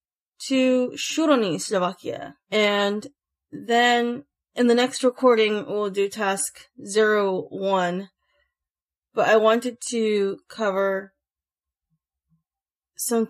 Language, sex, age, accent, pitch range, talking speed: English, female, 20-39, American, 185-245 Hz, 85 wpm